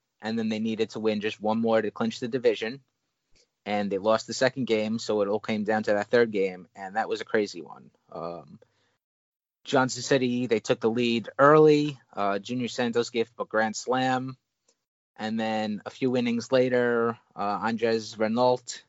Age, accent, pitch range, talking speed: 30-49, American, 105-125 Hz, 185 wpm